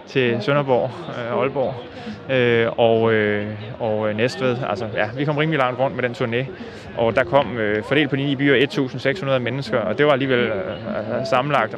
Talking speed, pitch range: 190 wpm, 115-130 Hz